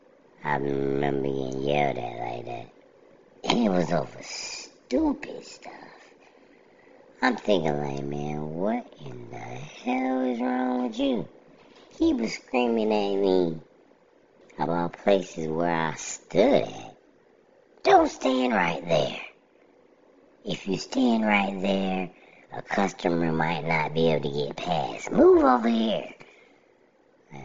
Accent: American